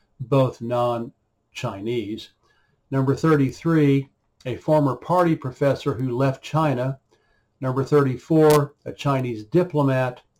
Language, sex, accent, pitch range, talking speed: English, male, American, 125-150 Hz, 90 wpm